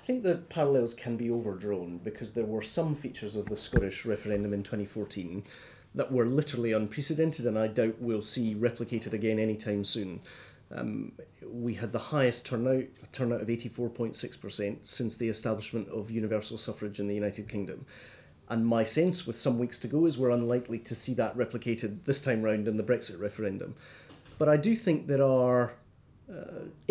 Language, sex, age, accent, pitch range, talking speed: English, male, 30-49, British, 110-135 Hz, 180 wpm